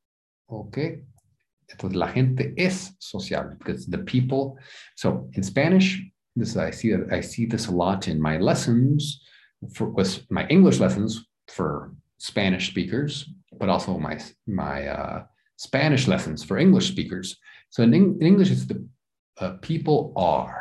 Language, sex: English, male